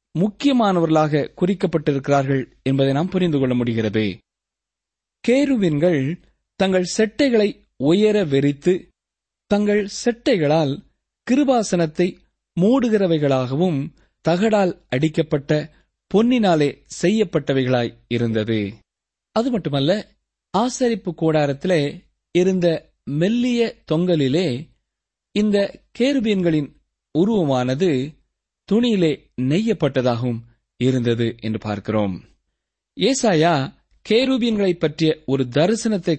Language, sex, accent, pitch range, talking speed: Tamil, male, native, 130-200 Hz, 70 wpm